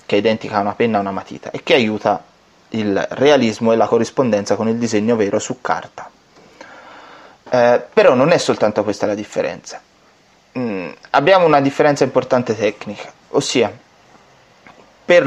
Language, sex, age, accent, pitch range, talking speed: Italian, male, 30-49, native, 105-145 Hz, 145 wpm